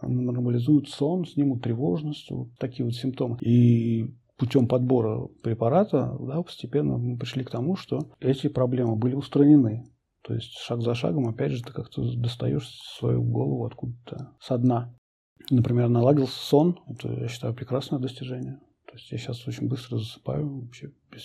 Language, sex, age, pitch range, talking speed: Russian, male, 40-59, 120-135 Hz, 155 wpm